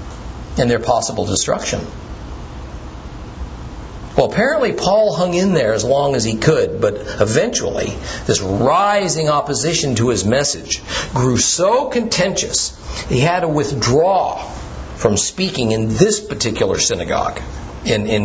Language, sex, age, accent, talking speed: English, male, 50-69, American, 120 wpm